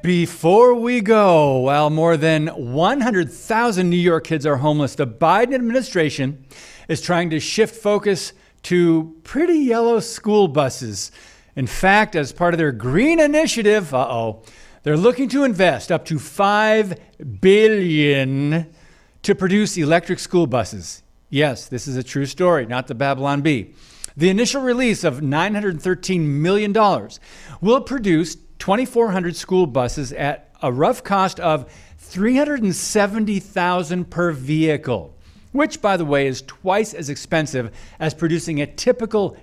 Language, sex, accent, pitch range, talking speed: English, male, American, 140-200 Hz, 135 wpm